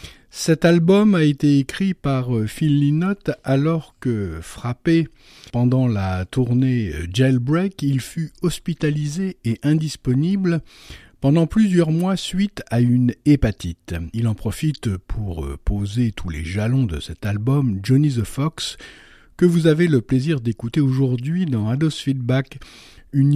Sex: male